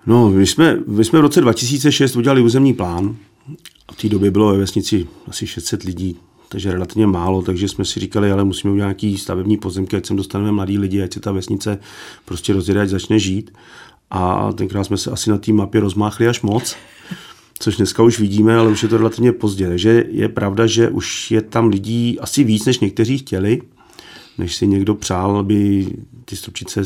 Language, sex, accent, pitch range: Czech, male, native, 95-110 Hz